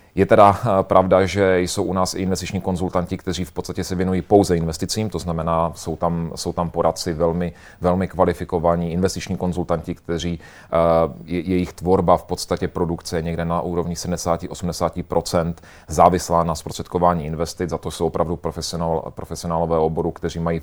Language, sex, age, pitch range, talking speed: Czech, male, 30-49, 85-95 Hz, 155 wpm